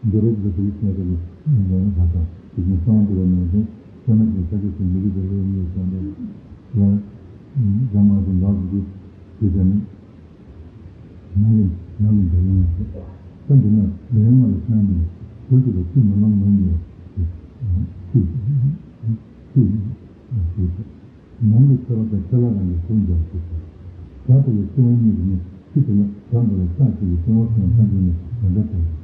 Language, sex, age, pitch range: Italian, male, 60-79, 90-110 Hz